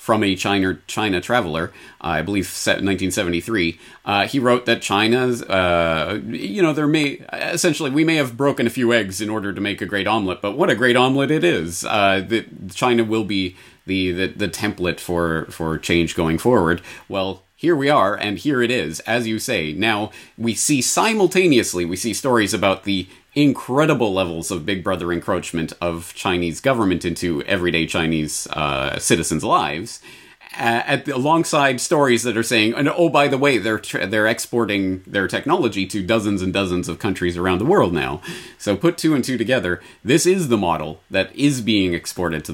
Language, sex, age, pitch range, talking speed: English, male, 30-49, 90-120 Hz, 190 wpm